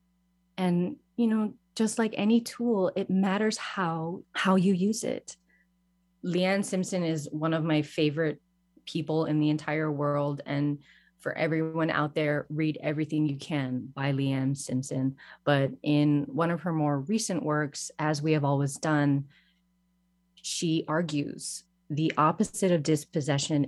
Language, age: English, 30-49